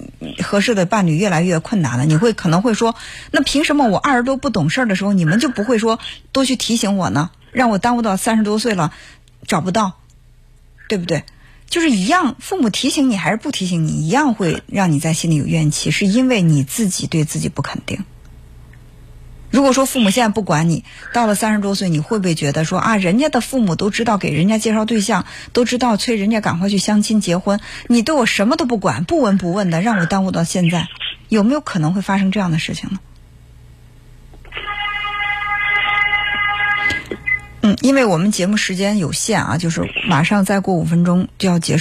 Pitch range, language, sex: 165-230 Hz, Chinese, female